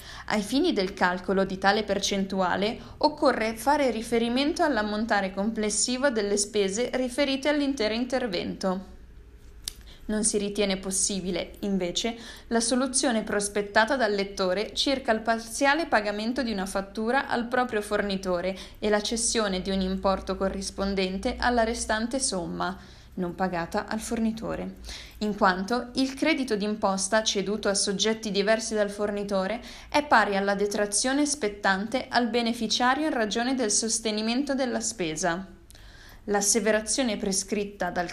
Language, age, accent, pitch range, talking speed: Italian, 20-39, native, 195-235 Hz, 125 wpm